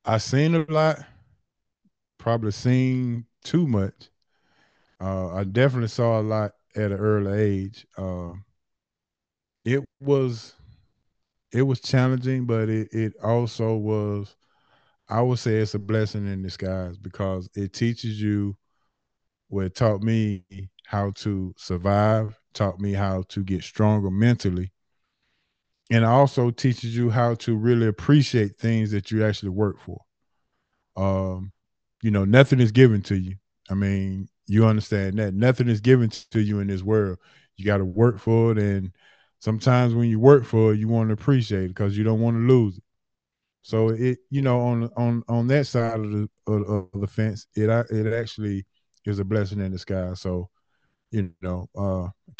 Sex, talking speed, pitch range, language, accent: male, 165 wpm, 100-115 Hz, English, American